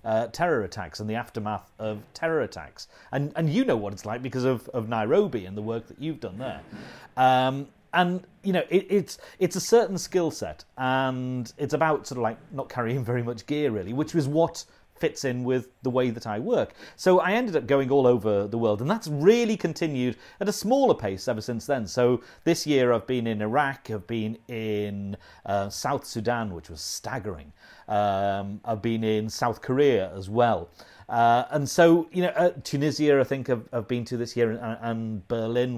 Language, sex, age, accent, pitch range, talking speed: English, male, 40-59, British, 110-150 Hz, 205 wpm